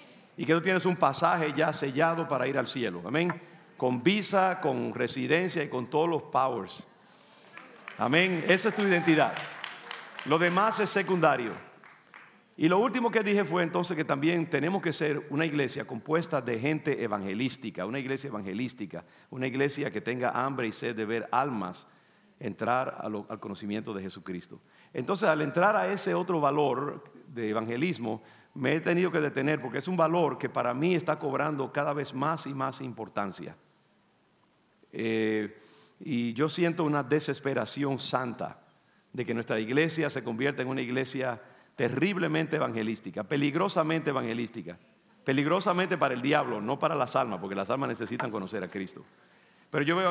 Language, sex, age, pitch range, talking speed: English, male, 50-69, 120-165 Hz, 160 wpm